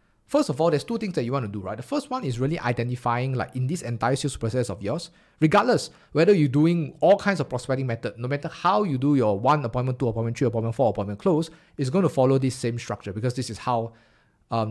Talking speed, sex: 255 wpm, male